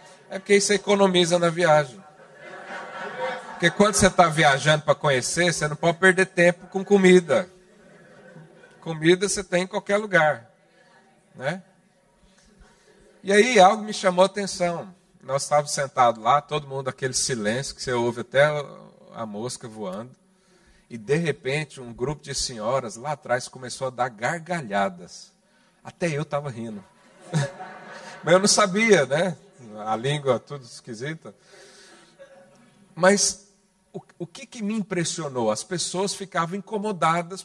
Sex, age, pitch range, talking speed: male, 50-69, 155-190 Hz, 140 wpm